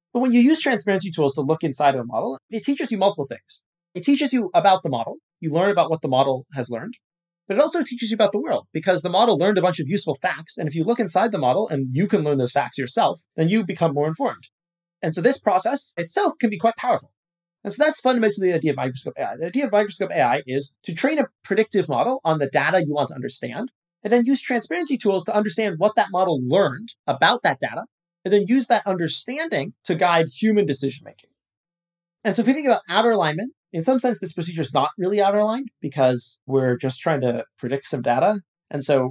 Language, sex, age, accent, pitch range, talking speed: English, male, 30-49, American, 140-215 Hz, 235 wpm